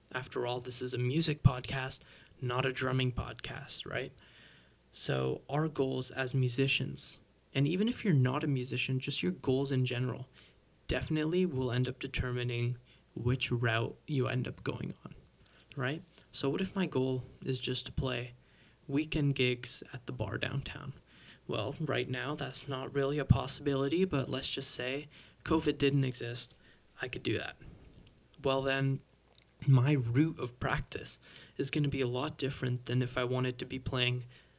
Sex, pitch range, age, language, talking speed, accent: male, 125-145 Hz, 20-39, English, 165 wpm, American